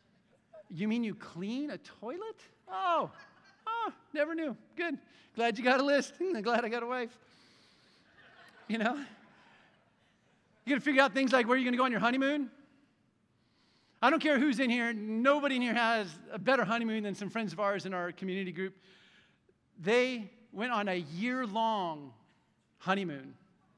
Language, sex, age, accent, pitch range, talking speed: English, male, 50-69, American, 195-255 Hz, 165 wpm